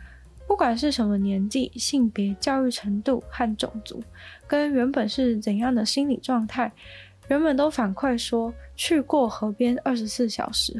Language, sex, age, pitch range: Chinese, female, 20-39, 220-270 Hz